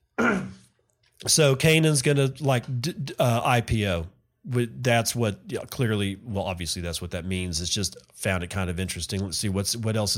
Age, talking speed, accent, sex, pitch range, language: 40-59, 170 wpm, American, male, 110-135 Hz, English